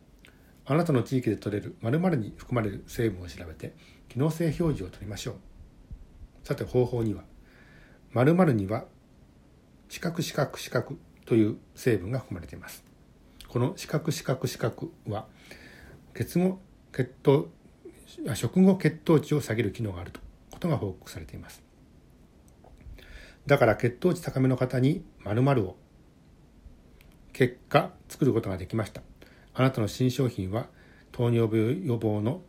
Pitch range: 95-135 Hz